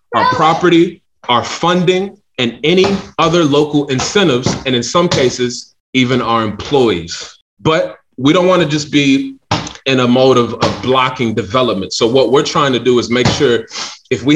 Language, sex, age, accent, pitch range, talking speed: English, male, 30-49, American, 120-145 Hz, 165 wpm